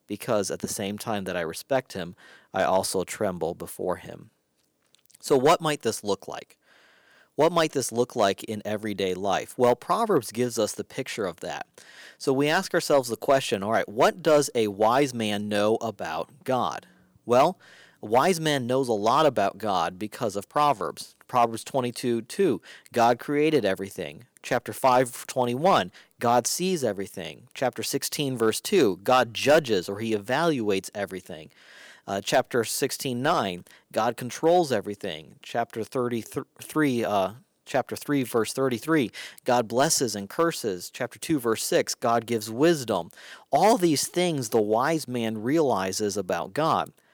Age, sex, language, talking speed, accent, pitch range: 40-59, male, English, 150 wpm, American, 105-145 Hz